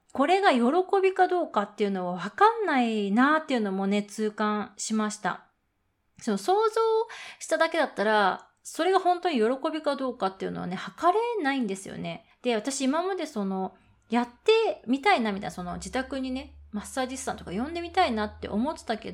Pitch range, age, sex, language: 210-320 Hz, 30-49, female, Japanese